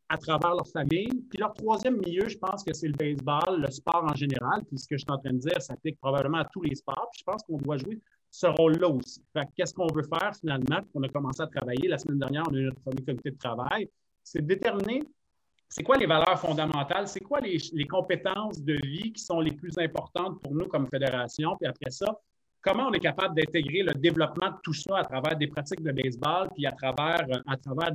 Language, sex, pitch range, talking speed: French, male, 140-175 Hz, 245 wpm